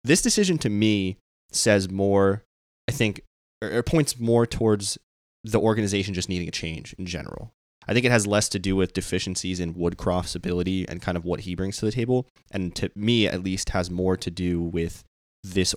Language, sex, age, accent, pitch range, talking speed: English, male, 20-39, American, 90-100 Hz, 200 wpm